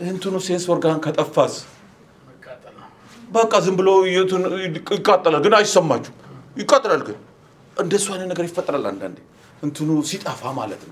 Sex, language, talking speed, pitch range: male, English, 70 wpm, 150-190 Hz